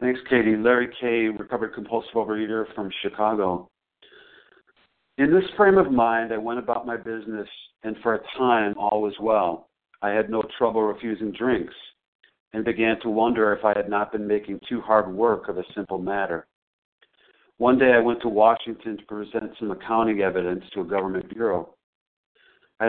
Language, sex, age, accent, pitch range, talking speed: English, male, 50-69, American, 105-120 Hz, 170 wpm